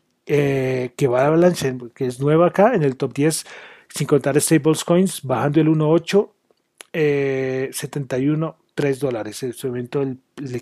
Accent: Argentinian